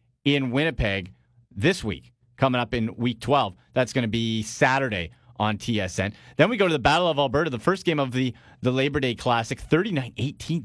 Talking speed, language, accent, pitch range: 190 wpm, English, American, 120-150 Hz